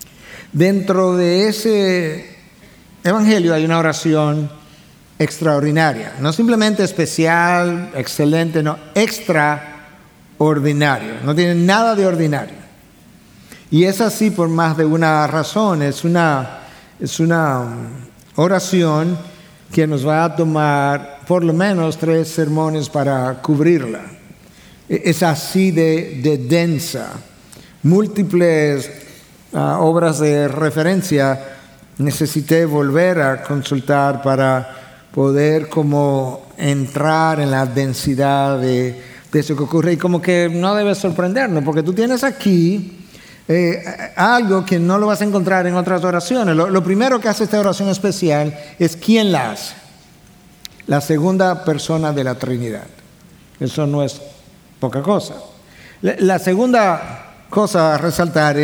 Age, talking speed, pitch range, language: 60-79, 120 wpm, 145-180 Hz, Spanish